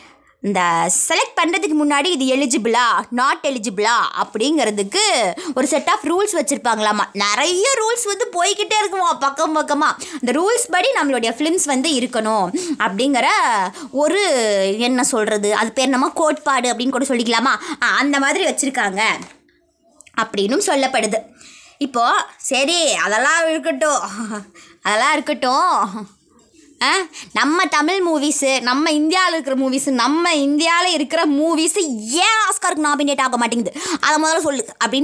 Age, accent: 20-39, native